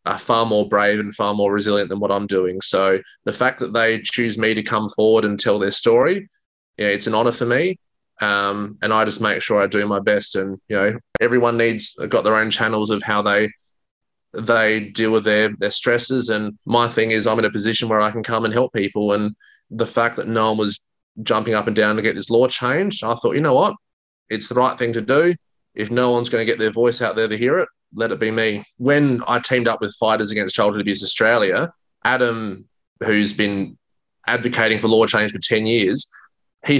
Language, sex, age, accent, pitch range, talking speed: English, male, 20-39, Australian, 105-120 Hz, 230 wpm